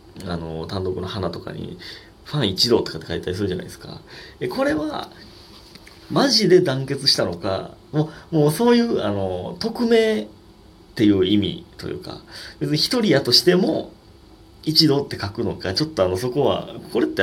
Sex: male